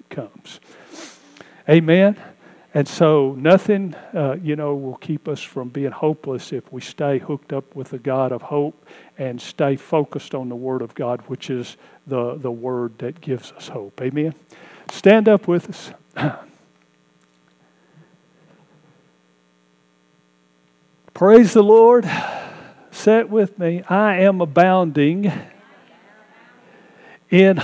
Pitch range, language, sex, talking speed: 135-195 Hz, English, male, 120 wpm